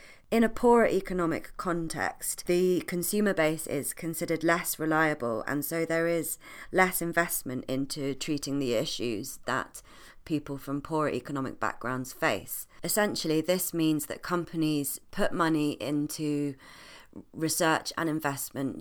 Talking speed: 130 wpm